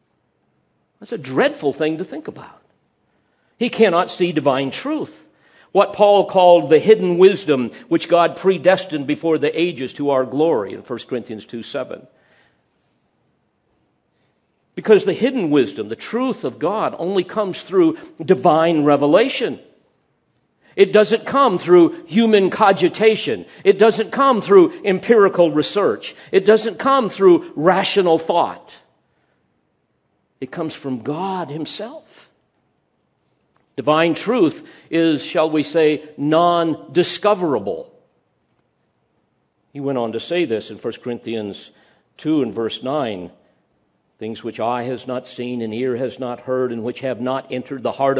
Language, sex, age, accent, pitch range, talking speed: English, male, 50-69, American, 140-210 Hz, 130 wpm